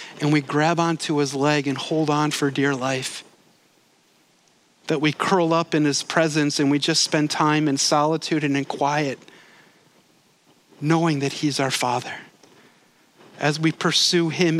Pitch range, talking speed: 140-180 Hz, 155 wpm